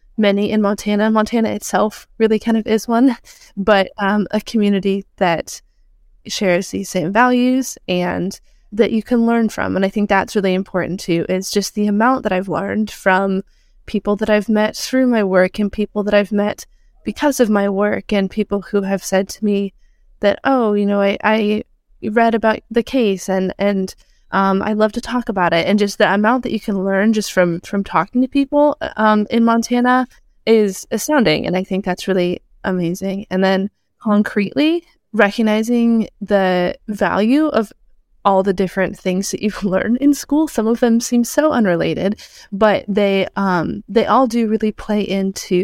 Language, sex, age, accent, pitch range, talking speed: English, female, 20-39, American, 190-225 Hz, 180 wpm